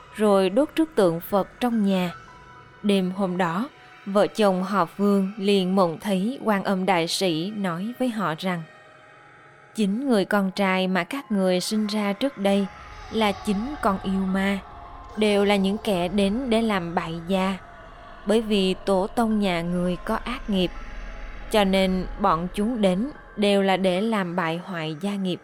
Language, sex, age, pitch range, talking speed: Vietnamese, female, 20-39, 180-210 Hz, 170 wpm